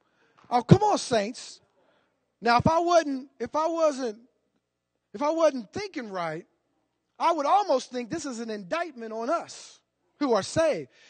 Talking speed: 155 wpm